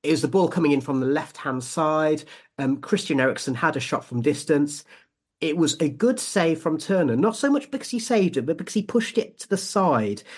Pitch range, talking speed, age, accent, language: 140-170 Hz, 230 wpm, 40-59, British, English